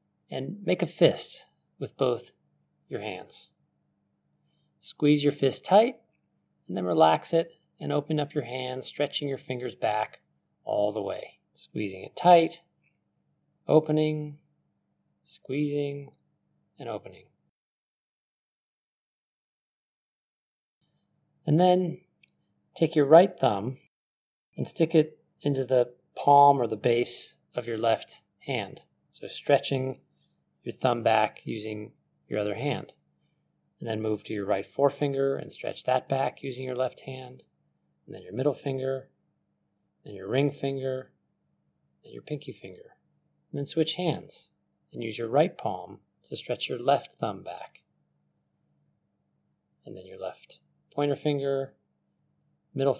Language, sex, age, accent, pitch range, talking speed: English, male, 30-49, American, 95-145 Hz, 130 wpm